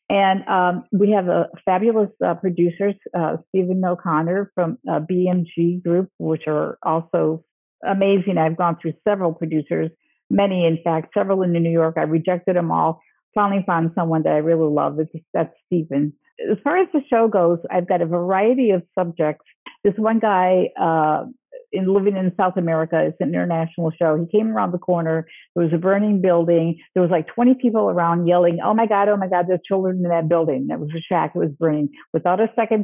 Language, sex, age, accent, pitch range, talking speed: English, female, 50-69, American, 165-200 Hz, 200 wpm